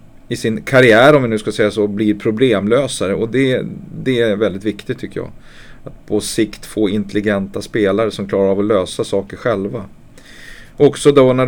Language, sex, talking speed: Swedish, male, 185 wpm